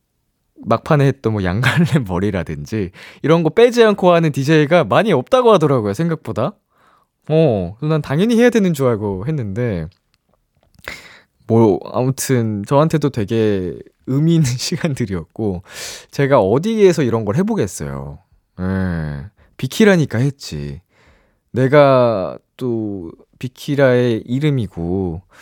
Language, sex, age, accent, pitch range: Korean, male, 20-39, native, 95-155 Hz